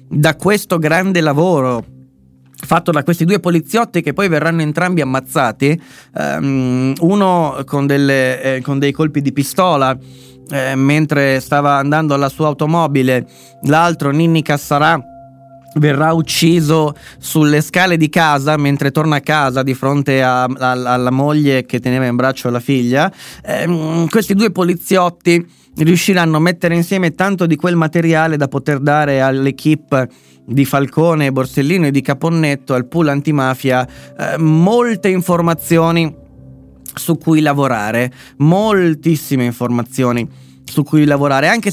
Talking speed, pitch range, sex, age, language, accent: 135 wpm, 130-165 Hz, male, 30-49, Italian, native